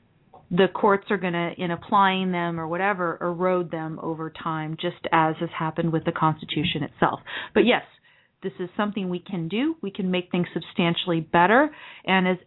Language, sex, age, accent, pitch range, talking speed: English, female, 40-59, American, 170-205 Hz, 180 wpm